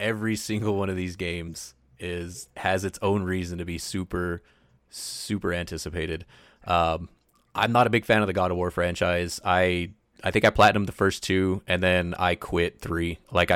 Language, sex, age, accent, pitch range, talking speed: English, male, 30-49, American, 90-105 Hz, 185 wpm